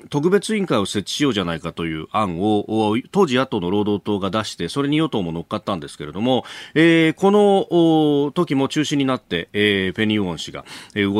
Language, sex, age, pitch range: Japanese, male, 40-59, 105-160 Hz